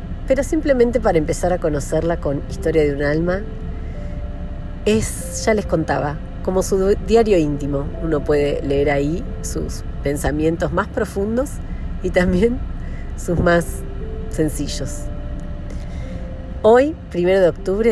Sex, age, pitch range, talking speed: female, 40-59, 140-180 Hz, 120 wpm